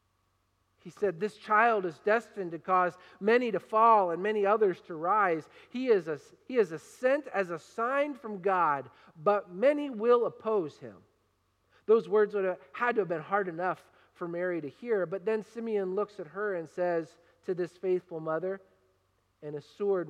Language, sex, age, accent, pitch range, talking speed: English, male, 40-59, American, 135-215 Hz, 170 wpm